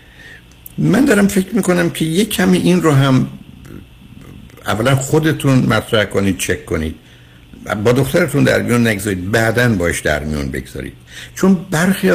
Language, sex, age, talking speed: Persian, male, 60-79, 140 wpm